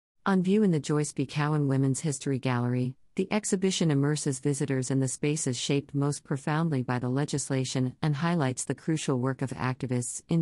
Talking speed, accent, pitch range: 180 wpm, American, 130-155 Hz